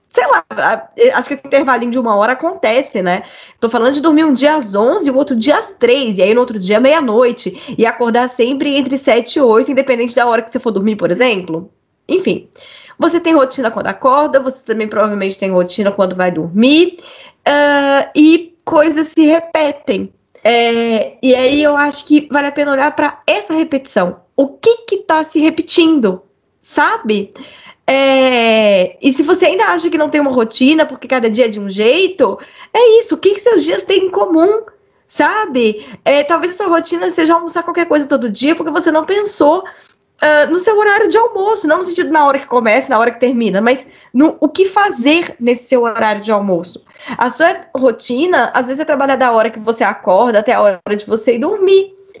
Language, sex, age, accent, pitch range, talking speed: Portuguese, female, 10-29, Brazilian, 230-330 Hz, 195 wpm